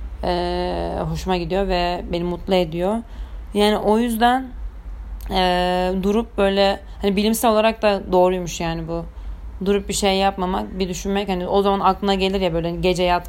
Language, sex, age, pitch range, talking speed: Turkish, female, 30-49, 170-205 Hz, 160 wpm